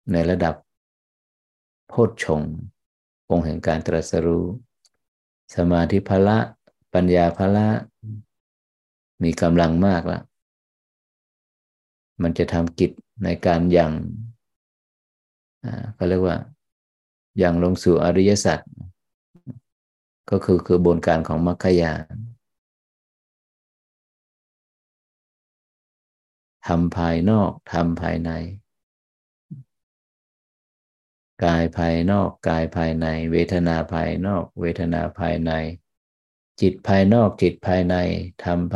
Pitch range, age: 80-95 Hz, 50-69